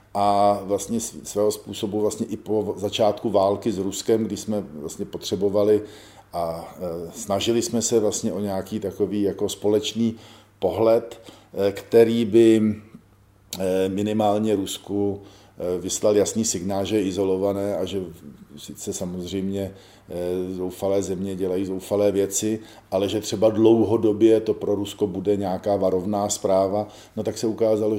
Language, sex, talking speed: Czech, male, 130 wpm